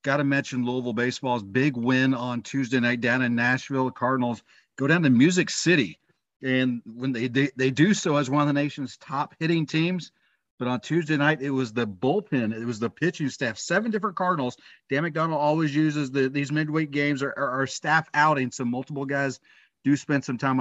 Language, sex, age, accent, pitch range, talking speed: English, male, 40-59, American, 120-140 Hz, 200 wpm